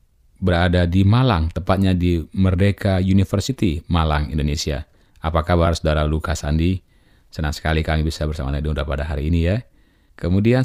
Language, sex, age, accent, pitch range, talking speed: Indonesian, male, 30-49, native, 75-95 Hz, 140 wpm